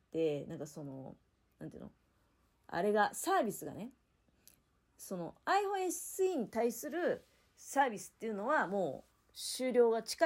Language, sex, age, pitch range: Japanese, female, 40-59, 170-270 Hz